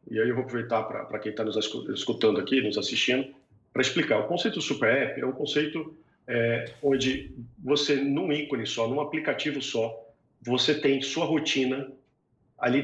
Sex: male